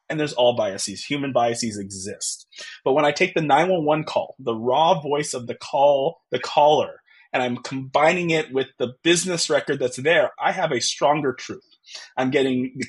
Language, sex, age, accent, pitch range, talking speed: English, male, 20-39, American, 125-160 Hz, 185 wpm